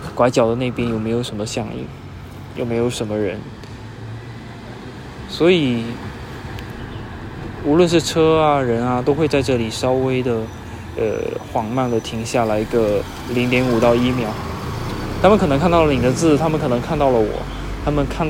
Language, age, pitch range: Chinese, 20-39, 110-135 Hz